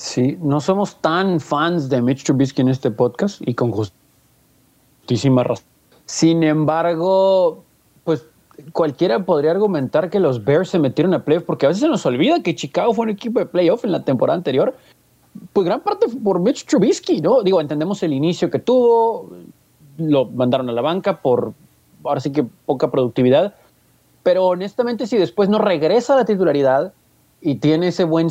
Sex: male